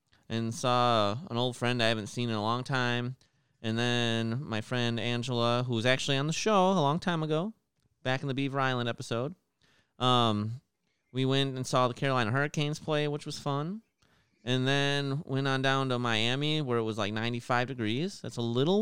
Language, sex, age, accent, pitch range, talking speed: English, male, 30-49, American, 110-140 Hz, 195 wpm